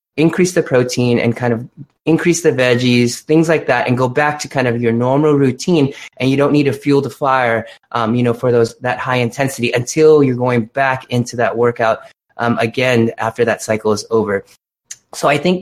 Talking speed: 210 wpm